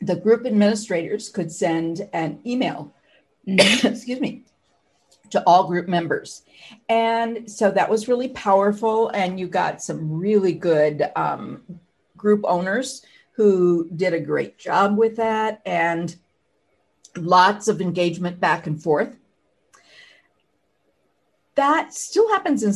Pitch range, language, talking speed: 175-225 Hz, English, 120 wpm